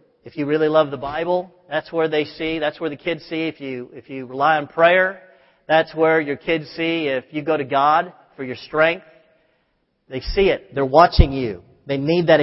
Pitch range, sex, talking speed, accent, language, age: 155-210 Hz, male, 210 wpm, American, English, 40-59